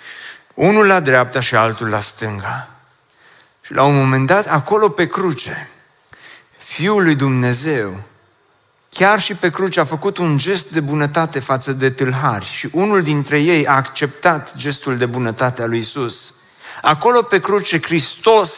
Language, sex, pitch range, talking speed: Romanian, male, 145-200 Hz, 150 wpm